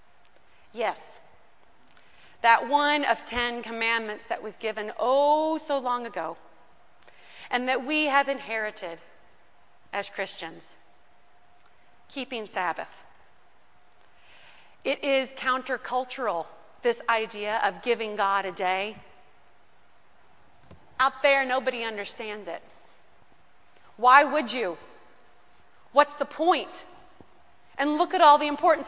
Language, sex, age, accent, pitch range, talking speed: English, female, 30-49, American, 225-290 Hz, 100 wpm